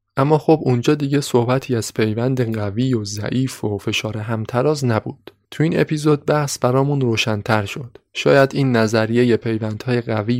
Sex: male